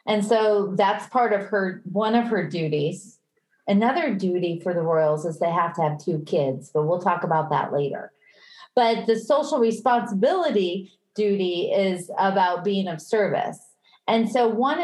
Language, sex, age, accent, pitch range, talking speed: English, female, 40-59, American, 175-230 Hz, 165 wpm